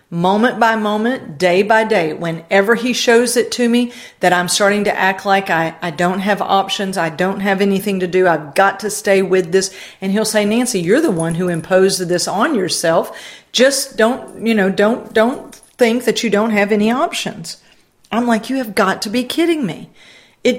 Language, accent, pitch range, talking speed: English, American, 180-230 Hz, 205 wpm